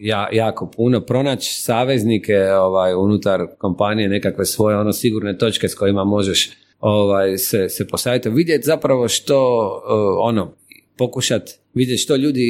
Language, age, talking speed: Croatian, 40-59, 140 wpm